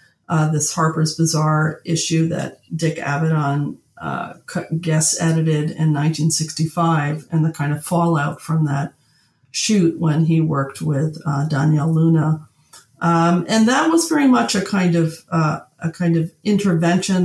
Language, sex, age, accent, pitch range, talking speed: English, female, 40-59, American, 160-190 Hz, 145 wpm